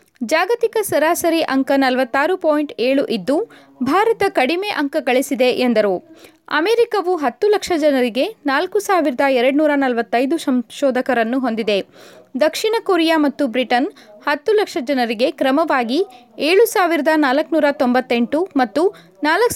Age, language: 20-39, Kannada